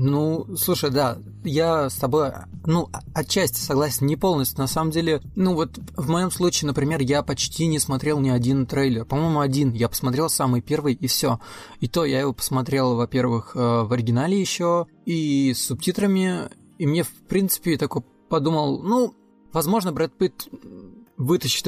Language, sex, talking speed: Russian, male, 165 wpm